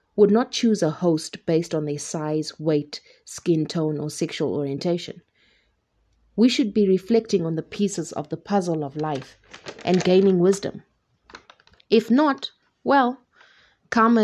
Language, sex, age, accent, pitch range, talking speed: English, female, 30-49, South African, 160-195 Hz, 145 wpm